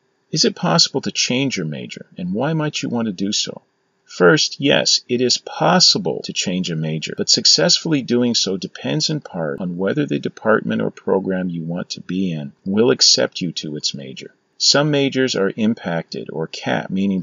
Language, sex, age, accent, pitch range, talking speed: English, male, 40-59, American, 75-100 Hz, 190 wpm